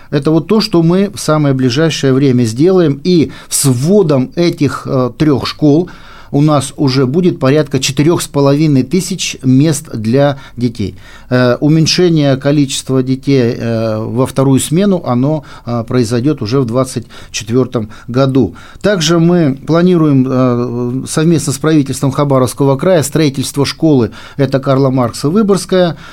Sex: male